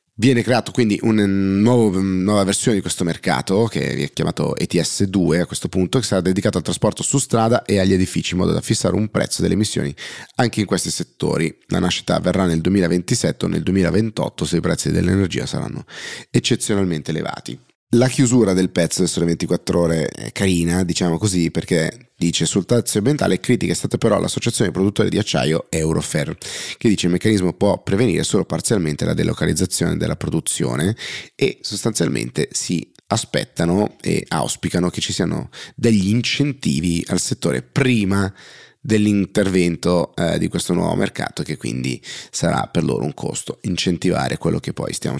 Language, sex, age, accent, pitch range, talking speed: Italian, male, 30-49, native, 90-115 Hz, 160 wpm